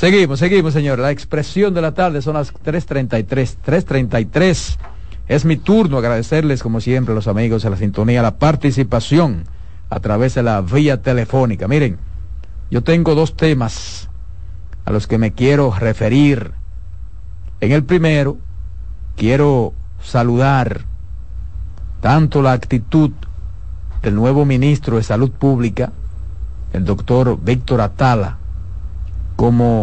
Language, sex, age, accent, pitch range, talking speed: Spanish, male, 50-69, Mexican, 85-140 Hz, 125 wpm